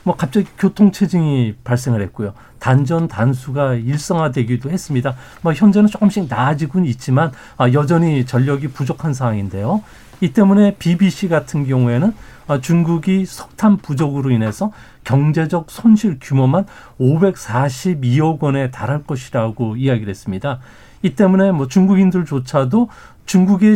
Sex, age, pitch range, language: male, 40-59, 130-195 Hz, Korean